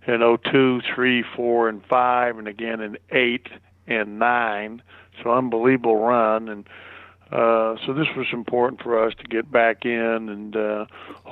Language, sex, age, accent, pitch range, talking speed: English, male, 50-69, American, 110-120 Hz, 160 wpm